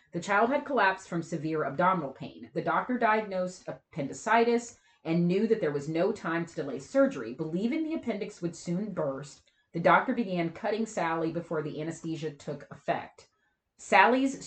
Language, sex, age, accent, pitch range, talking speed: English, female, 30-49, American, 145-200 Hz, 160 wpm